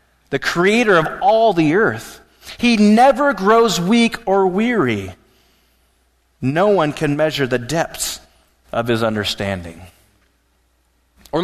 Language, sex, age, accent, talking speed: English, male, 30-49, American, 115 wpm